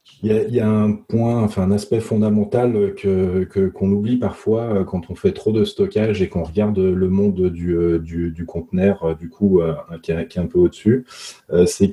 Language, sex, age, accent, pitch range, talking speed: French, male, 30-49, French, 85-120 Hz, 195 wpm